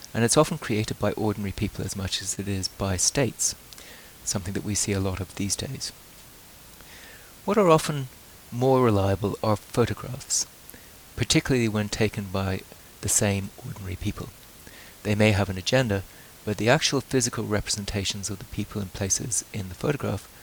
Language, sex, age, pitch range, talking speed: English, male, 30-49, 95-115 Hz, 165 wpm